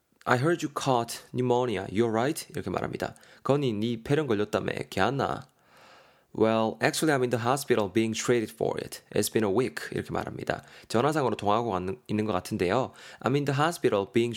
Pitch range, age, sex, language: 105-135 Hz, 20-39, male, Korean